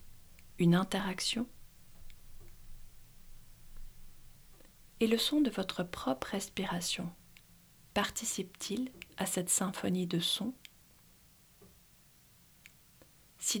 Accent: French